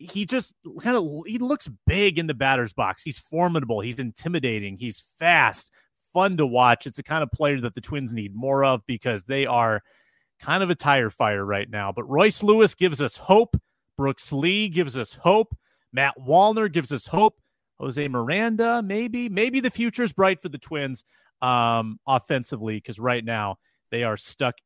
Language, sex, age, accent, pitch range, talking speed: English, male, 30-49, American, 120-180 Hz, 180 wpm